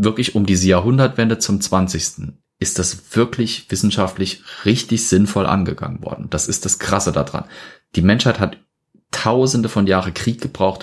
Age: 30-49